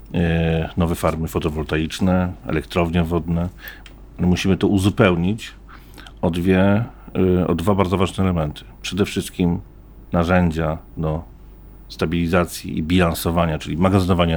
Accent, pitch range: native, 80-90 Hz